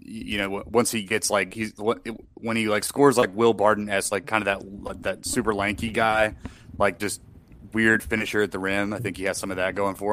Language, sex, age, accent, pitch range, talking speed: English, male, 30-49, American, 95-105 Hz, 230 wpm